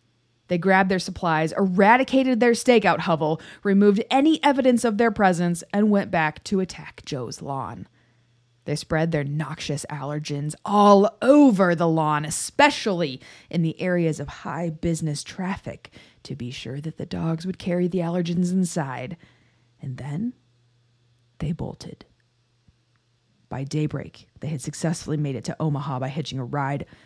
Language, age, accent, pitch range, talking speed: English, 20-39, American, 140-190 Hz, 145 wpm